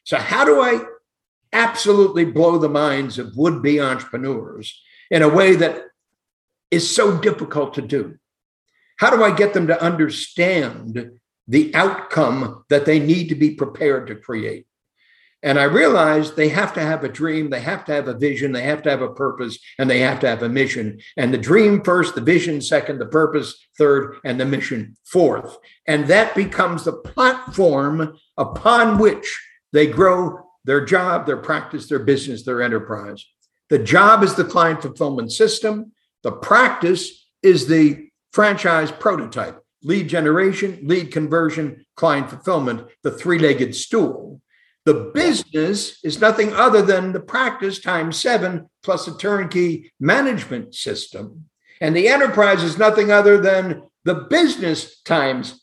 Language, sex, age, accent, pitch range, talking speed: English, male, 60-79, American, 145-195 Hz, 155 wpm